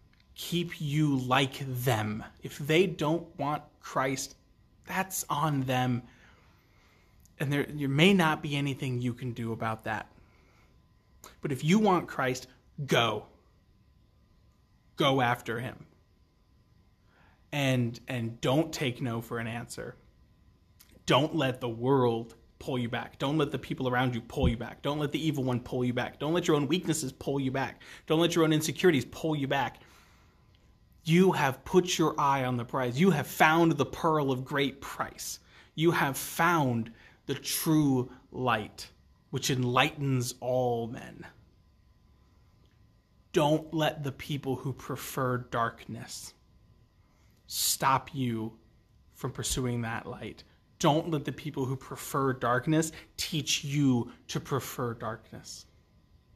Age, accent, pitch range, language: 30-49, American, 110-145 Hz, English